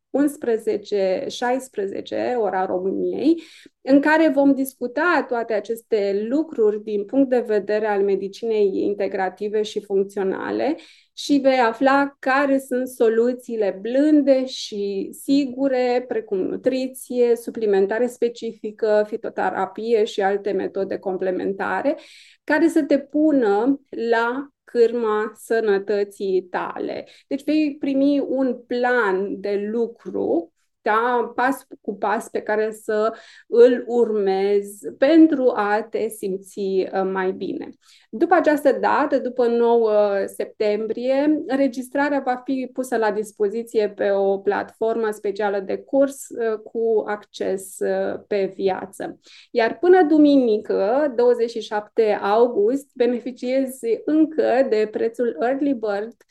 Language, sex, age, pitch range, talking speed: Romanian, female, 20-39, 210-275 Hz, 105 wpm